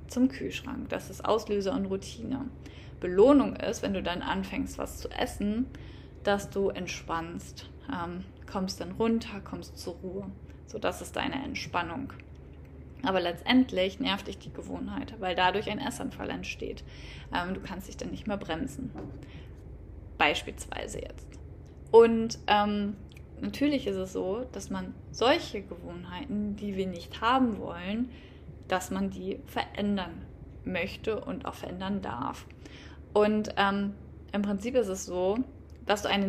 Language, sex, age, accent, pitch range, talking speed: German, female, 20-39, German, 185-215 Hz, 140 wpm